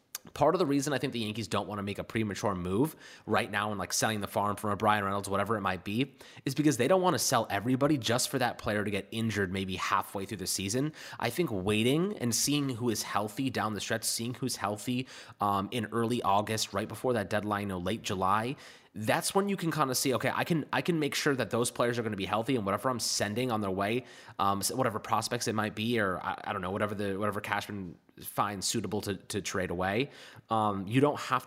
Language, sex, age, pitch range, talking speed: English, male, 20-39, 100-120 Hz, 250 wpm